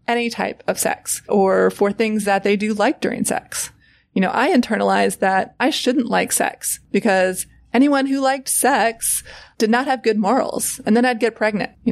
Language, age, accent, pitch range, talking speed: English, 20-39, American, 190-230 Hz, 190 wpm